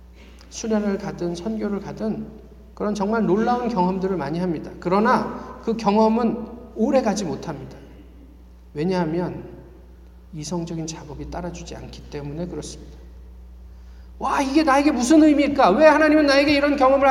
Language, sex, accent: Korean, male, native